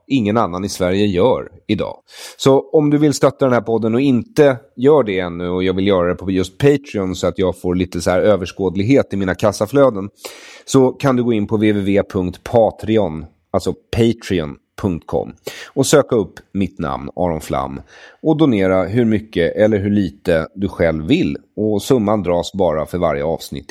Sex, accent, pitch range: male, Swedish, 90-120 Hz